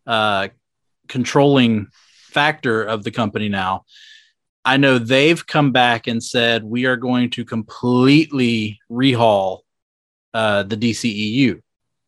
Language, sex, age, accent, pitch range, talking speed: English, male, 30-49, American, 120-140 Hz, 115 wpm